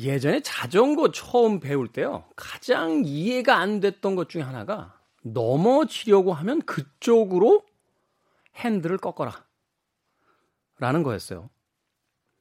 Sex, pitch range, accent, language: male, 140-230 Hz, native, Korean